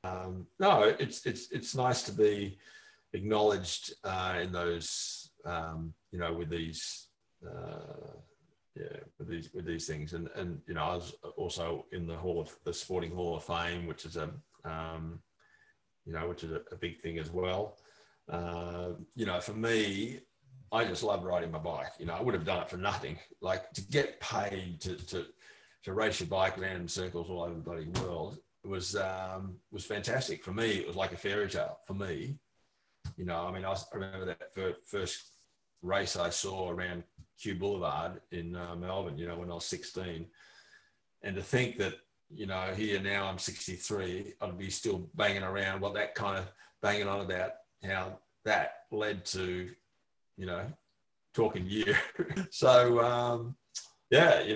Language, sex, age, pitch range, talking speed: English, male, 40-59, 85-105 Hz, 180 wpm